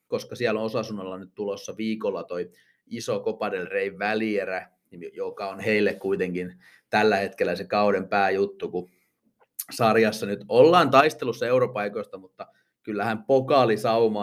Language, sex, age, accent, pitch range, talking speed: Finnish, male, 30-49, native, 105-135 Hz, 120 wpm